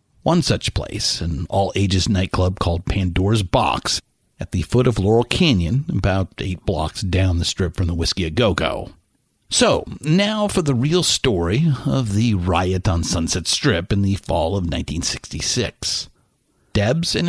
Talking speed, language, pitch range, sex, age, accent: 150 wpm, English, 90-125 Hz, male, 50-69, American